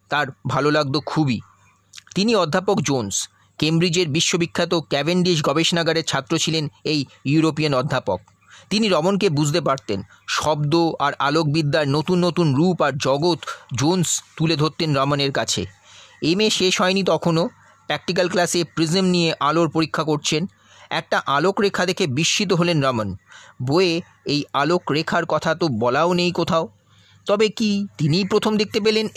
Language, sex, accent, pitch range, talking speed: Bengali, male, native, 140-180 Hz, 115 wpm